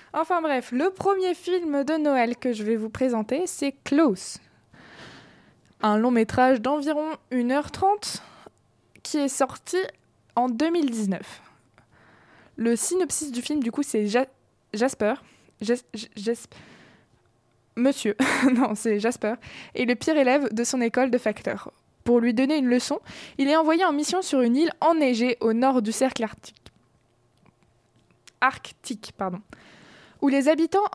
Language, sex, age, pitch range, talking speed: French, female, 20-39, 235-310 Hz, 140 wpm